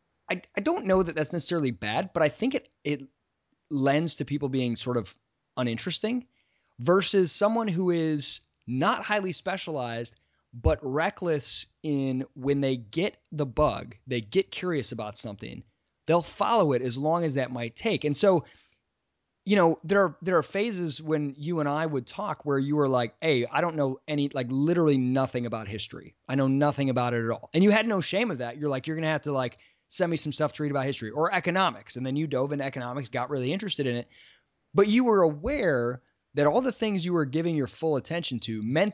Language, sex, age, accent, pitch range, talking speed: English, male, 20-39, American, 130-175 Hz, 210 wpm